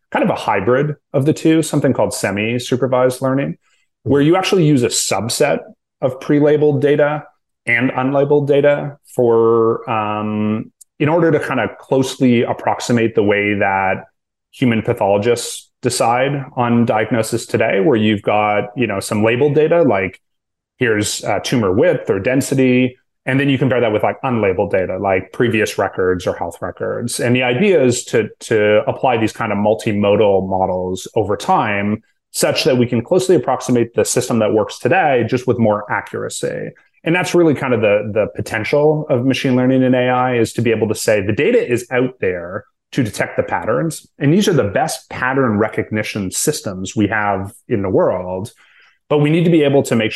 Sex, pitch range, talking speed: male, 110-140 Hz, 180 wpm